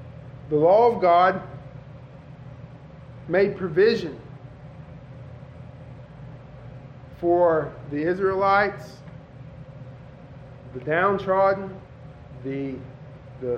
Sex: male